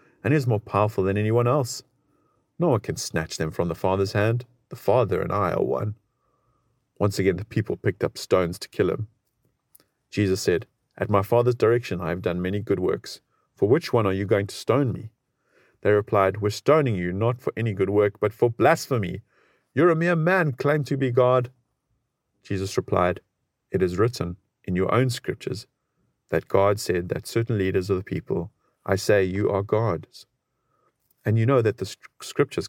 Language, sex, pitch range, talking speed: English, male, 95-125 Hz, 195 wpm